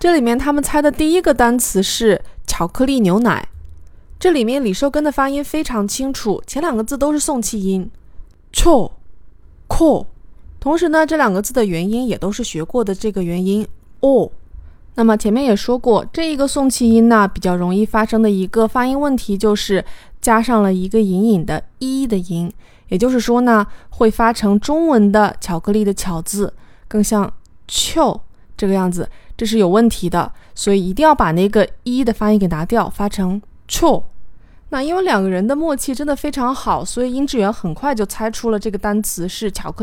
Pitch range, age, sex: 195-265 Hz, 20-39, female